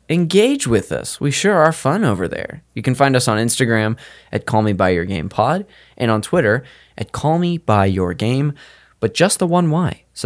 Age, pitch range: 20-39, 100-140 Hz